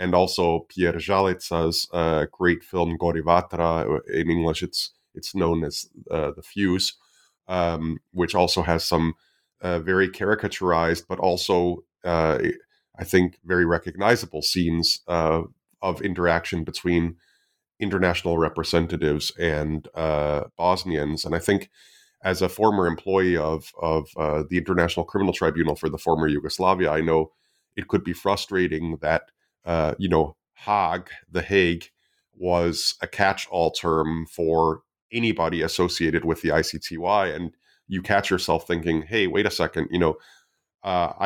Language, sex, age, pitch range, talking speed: English, male, 30-49, 80-90 Hz, 140 wpm